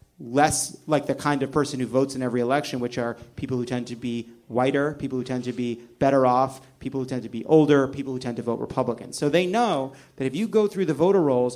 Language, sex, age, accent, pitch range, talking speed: English, male, 30-49, American, 125-155 Hz, 255 wpm